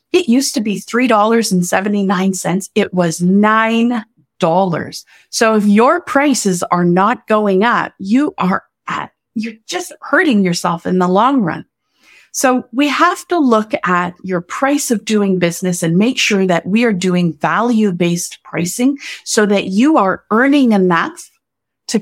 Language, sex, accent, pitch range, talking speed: English, female, American, 185-250 Hz, 145 wpm